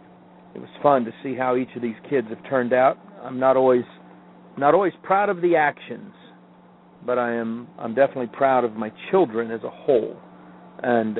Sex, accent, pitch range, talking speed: male, American, 115-150 Hz, 190 wpm